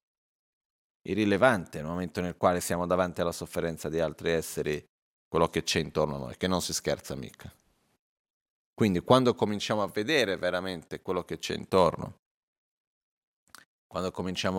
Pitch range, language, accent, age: 85-105 Hz, Italian, native, 30-49